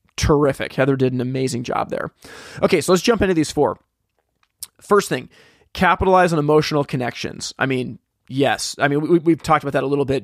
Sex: male